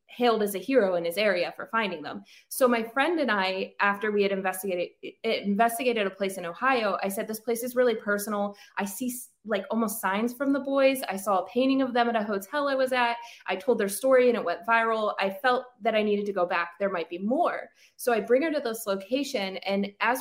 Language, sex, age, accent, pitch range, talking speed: English, female, 20-39, American, 195-240 Hz, 240 wpm